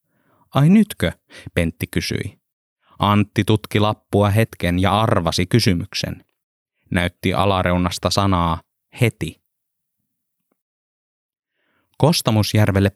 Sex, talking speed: male, 75 wpm